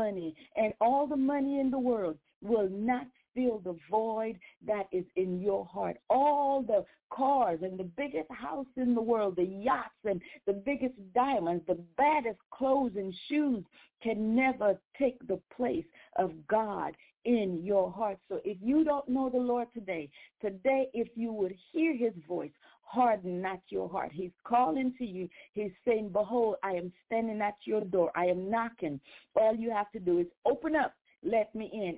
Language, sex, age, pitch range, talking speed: English, female, 40-59, 195-255 Hz, 175 wpm